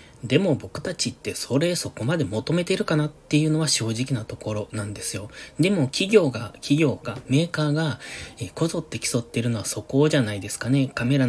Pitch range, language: 110-150 Hz, Japanese